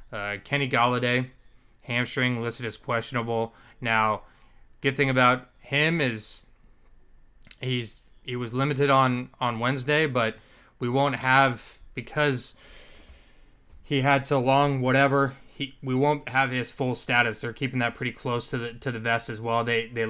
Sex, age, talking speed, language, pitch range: male, 20-39, 150 wpm, English, 115-135 Hz